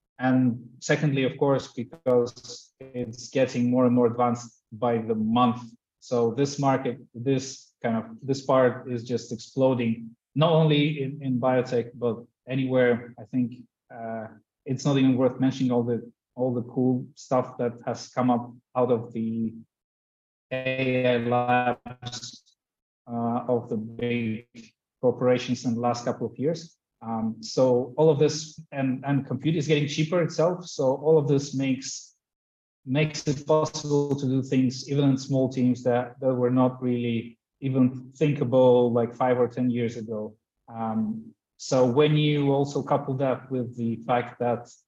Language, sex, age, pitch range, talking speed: English, male, 30-49, 115-135 Hz, 155 wpm